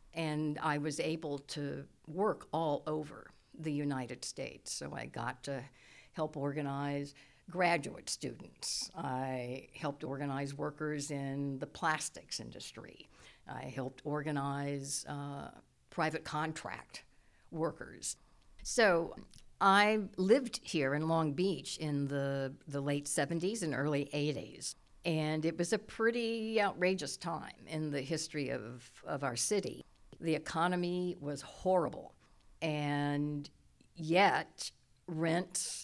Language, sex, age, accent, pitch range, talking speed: English, female, 60-79, American, 135-160 Hz, 115 wpm